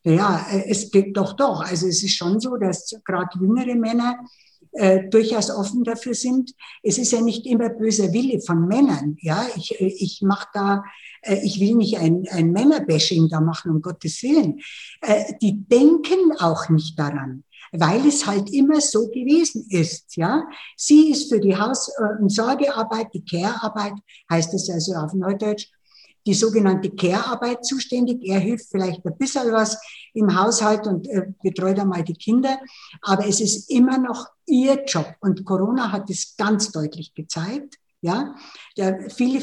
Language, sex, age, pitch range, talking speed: German, female, 60-79, 180-245 Hz, 165 wpm